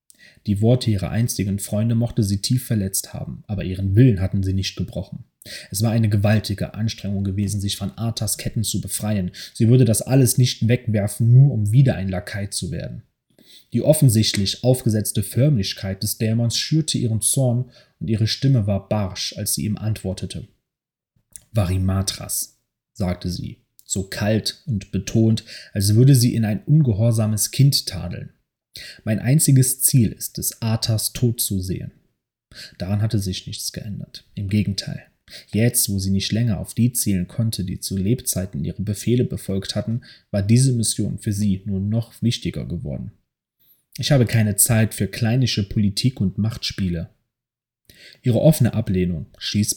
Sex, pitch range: male, 100-120 Hz